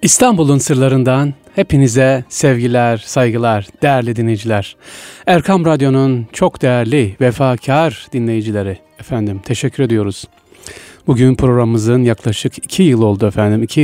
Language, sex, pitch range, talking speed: Turkish, male, 115-140 Hz, 105 wpm